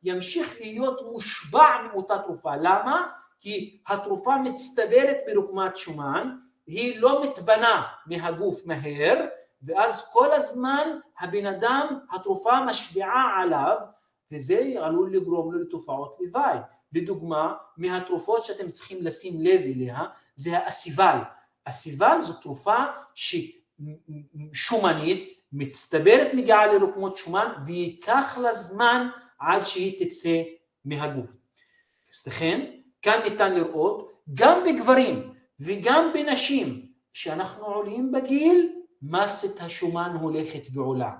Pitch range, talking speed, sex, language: 175-275 Hz, 100 wpm, male, Hebrew